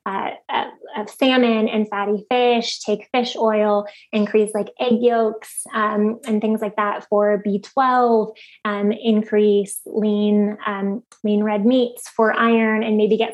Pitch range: 210-240 Hz